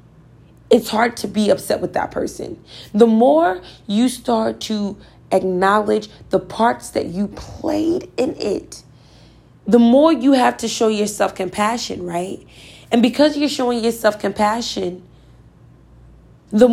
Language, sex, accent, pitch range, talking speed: English, female, American, 195-260 Hz, 135 wpm